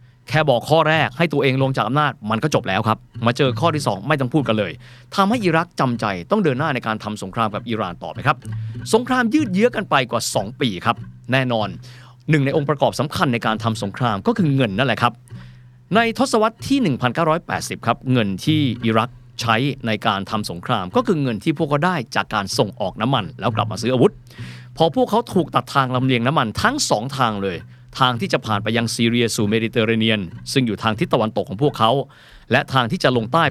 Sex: male